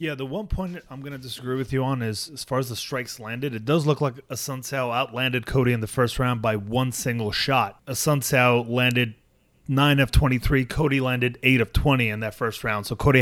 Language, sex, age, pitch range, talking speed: English, male, 30-49, 115-135 Hz, 225 wpm